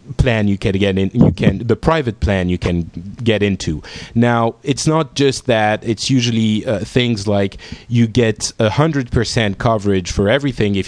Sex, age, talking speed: male, 30-49, 180 wpm